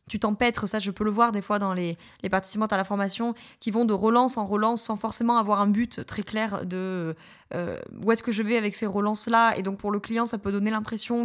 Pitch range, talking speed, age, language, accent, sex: 200-240 Hz, 255 wpm, 20-39, French, French, female